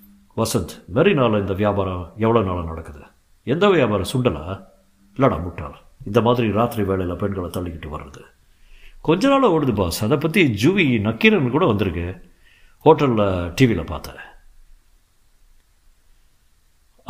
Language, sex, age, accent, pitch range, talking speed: Tamil, male, 60-79, native, 85-125 Hz, 110 wpm